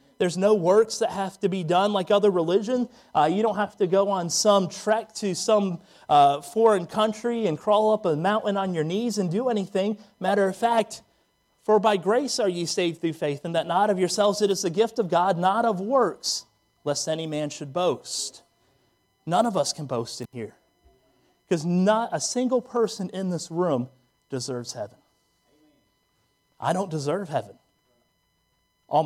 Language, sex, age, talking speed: English, male, 30-49, 180 wpm